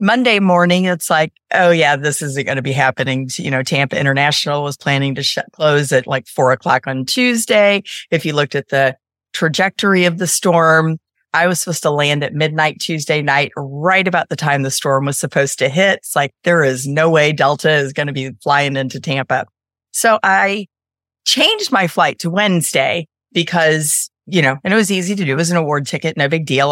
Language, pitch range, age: English, 140-175 Hz, 40-59